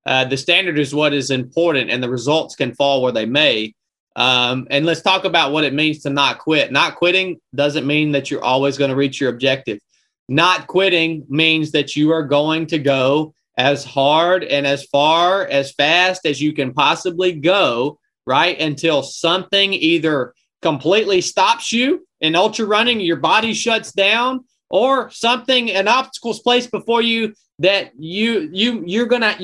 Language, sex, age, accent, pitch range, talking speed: English, male, 30-49, American, 150-220 Hz, 175 wpm